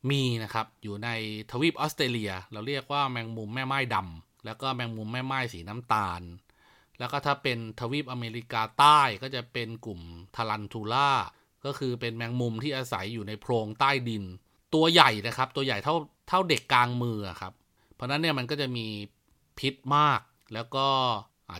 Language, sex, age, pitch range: Thai, male, 30-49, 110-145 Hz